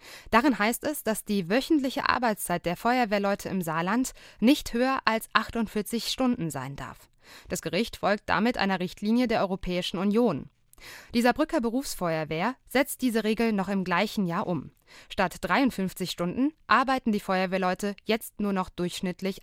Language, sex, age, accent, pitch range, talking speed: German, female, 20-39, German, 175-235 Hz, 150 wpm